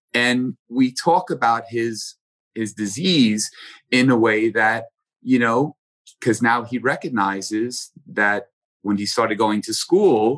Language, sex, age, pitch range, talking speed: English, male, 30-49, 95-115 Hz, 140 wpm